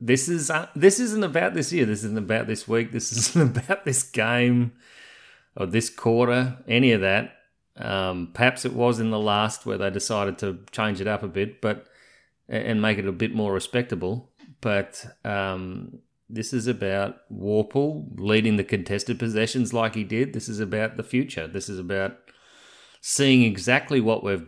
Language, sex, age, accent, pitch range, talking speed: English, male, 30-49, Australian, 105-130 Hz, 180 wpm